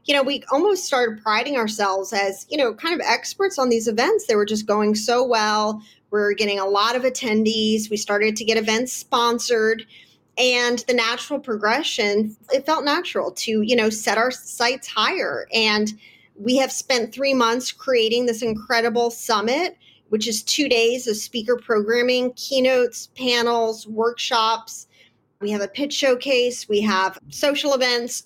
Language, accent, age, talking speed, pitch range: English, American, 30-49, 165 wpm, 210-250 Hz